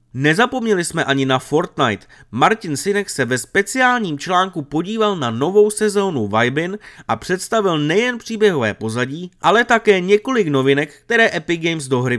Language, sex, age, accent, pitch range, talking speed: Czech, male, 30-49, native, 140-205 Hz, 150 wpm